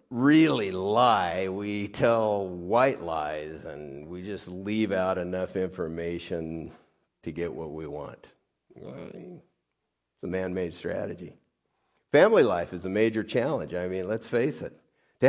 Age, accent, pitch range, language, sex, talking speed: 50-69, American, 90-125 Hz, English, male, 135 wpm